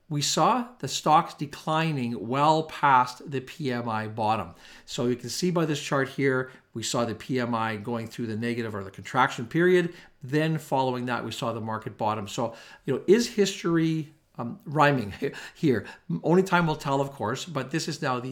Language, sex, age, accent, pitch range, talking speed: English, male, 50-69, American, 120-155 Hz, 185 wpm